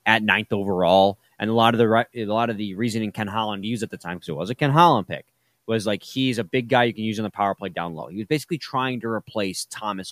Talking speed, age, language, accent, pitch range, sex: 290 wpm, 30-49, English, American, 115-170 Hz, male